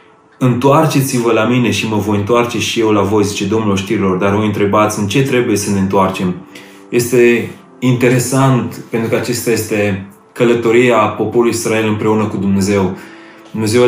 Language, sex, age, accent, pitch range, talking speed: Romanian, male, 30-49, native, 105-120 Hz, 155 wpm